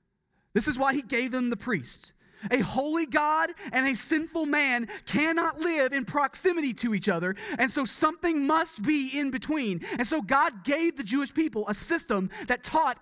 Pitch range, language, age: 165-225 Hz, English, 30-49